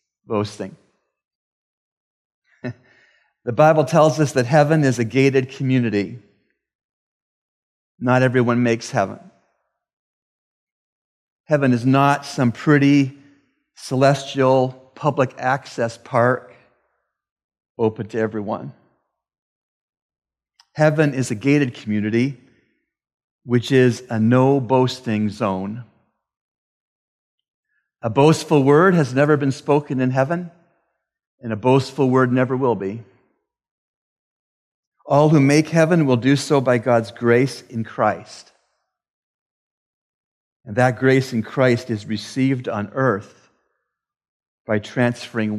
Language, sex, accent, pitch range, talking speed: English, male, American, 115-140 Hz, 100 wpm